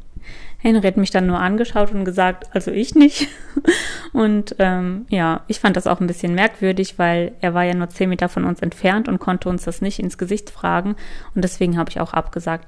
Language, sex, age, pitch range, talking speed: German, female, 20-39, 175-205 Hz, 215 wpm